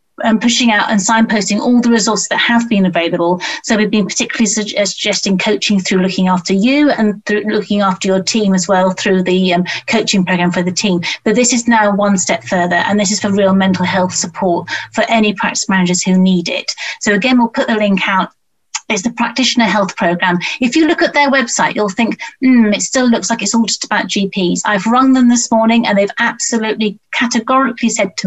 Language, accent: English, British